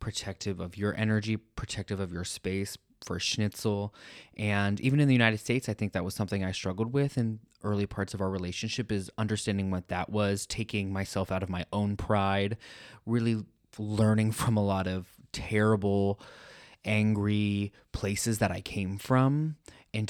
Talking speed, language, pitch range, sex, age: 165 wpm, English, 95-110 Hz, male, 20-39